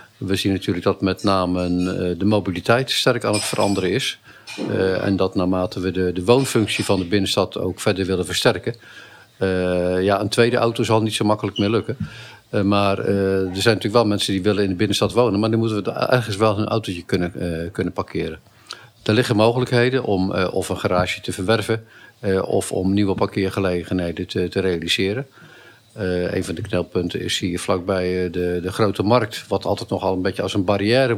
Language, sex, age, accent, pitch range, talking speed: Dutch, male, 50-69, Dutch, 95-110 Hz, 200 wpm